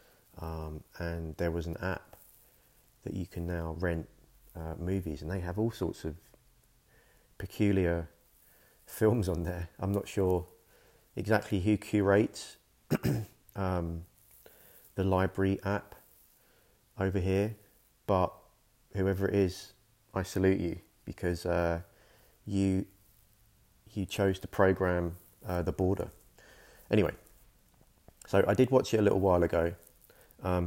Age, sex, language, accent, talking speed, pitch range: 30-49, male, English, British, 125 wpm, 85-100 Hz